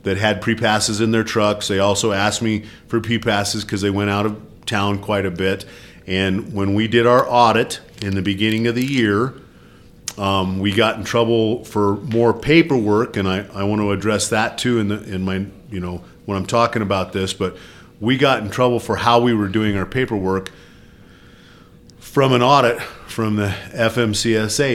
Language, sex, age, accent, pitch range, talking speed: English, male, 40-59, American, 100-120 Hz, 190 wpm